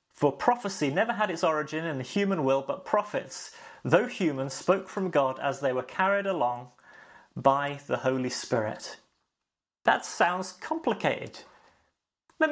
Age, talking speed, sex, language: 30-49, 145 wpm, male, English